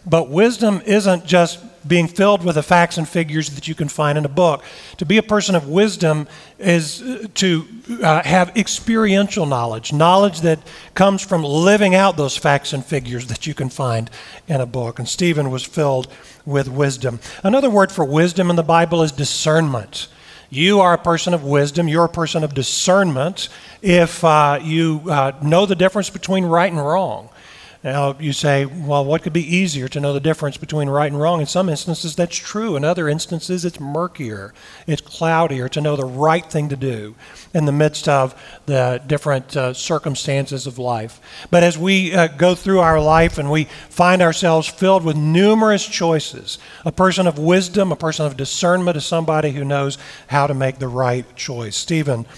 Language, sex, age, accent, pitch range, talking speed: English, male, 40-59, American, 140-175 Hz, 190 wpm